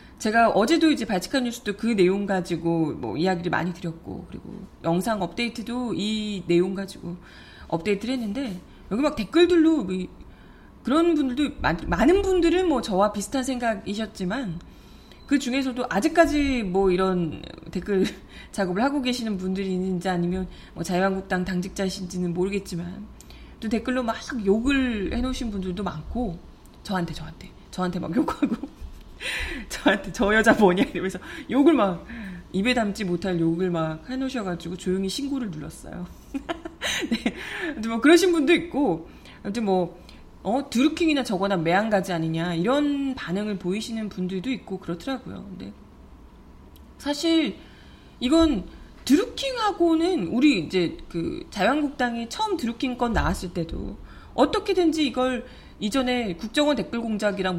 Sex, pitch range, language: female, 185-275 Hz, Korean